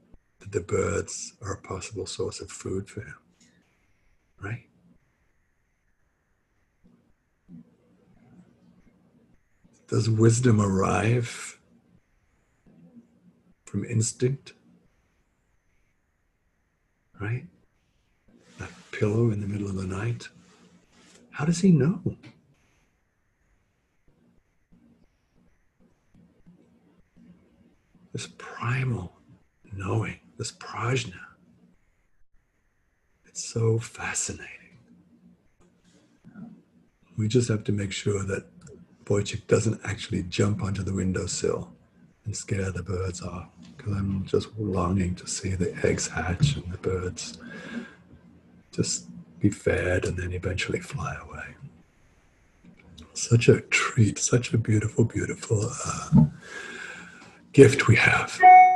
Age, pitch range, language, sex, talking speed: 60-79, 85-115 Hz, English, male, 90 wpm